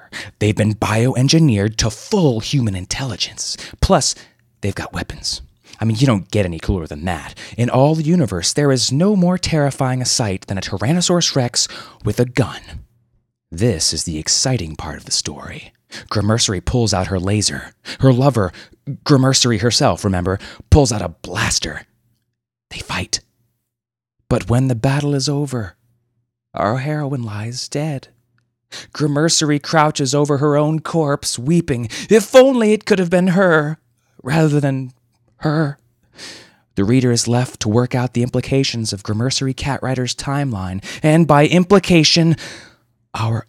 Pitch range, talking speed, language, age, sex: 110-145 Hz, 145 wpm, English, 30-49, male